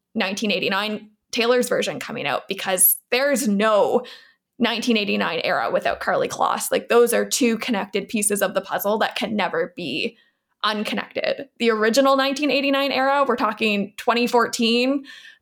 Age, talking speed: 20-39, 130 wpm